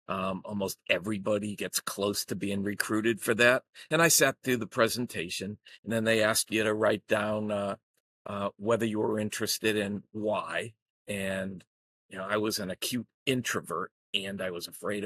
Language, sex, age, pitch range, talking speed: English, male, 50-69, 95-115 Hz, 175 wpm